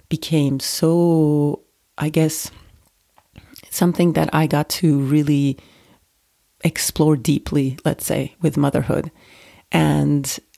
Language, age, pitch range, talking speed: English, 30-49, 145-175 Hz, 95 wpm